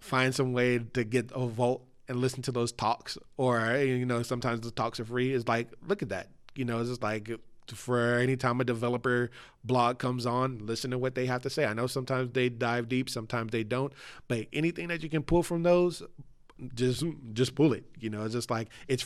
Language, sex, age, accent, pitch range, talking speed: English, male, 20-39, American, 115-135 Hz, 225 wpm